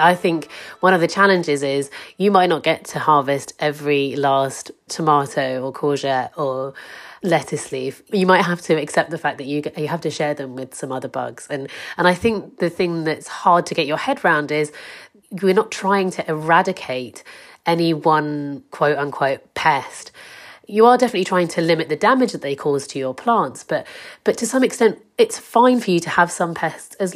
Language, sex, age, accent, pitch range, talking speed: English, female, 30-49, British, 145-190 Hz, 200 wpm